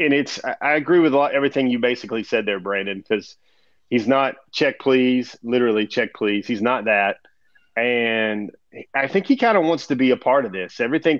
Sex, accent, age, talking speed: male, American, 30-49, 195 wpm